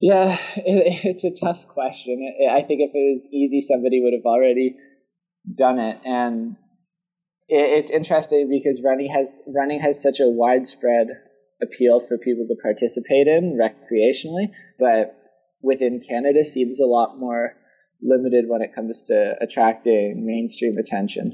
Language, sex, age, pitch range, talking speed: English, male, 20-39, 110-140 Hz, 145 wpm